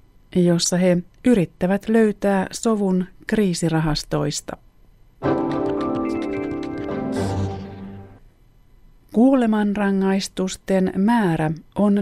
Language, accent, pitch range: Finnish, native, 165-195 Hz